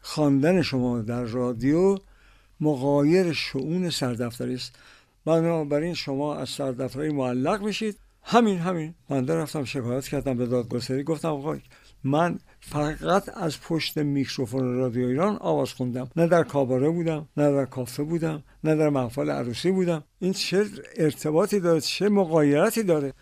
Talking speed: 135 wpm